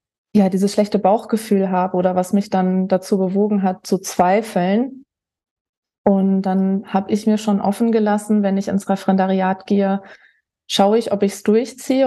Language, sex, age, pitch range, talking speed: German, female, 20-39, 190-215 Hz, 165 wpm